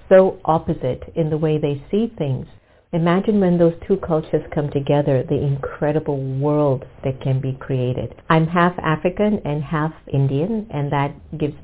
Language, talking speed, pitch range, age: English, 160 wpm, 140-175 Hz, 50-69